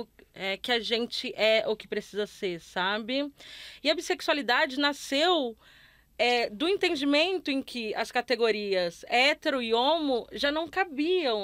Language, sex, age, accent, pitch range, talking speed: Portuguese, female, 20-39, Brazilian, 215-290 Hz, 135 wpm